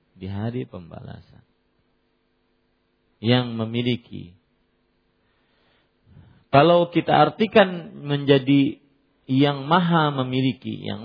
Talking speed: 70 wpm